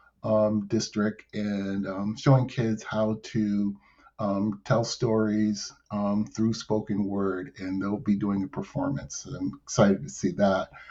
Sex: male